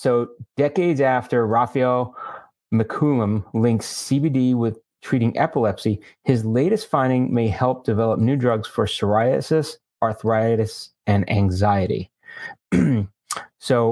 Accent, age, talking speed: American, 30-49, 105 wpm